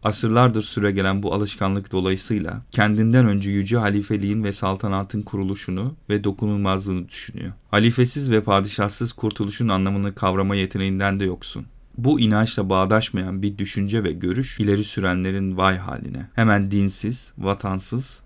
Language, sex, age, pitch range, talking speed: Turkish, male, 40-59, 100-115 Hz, 125 wpm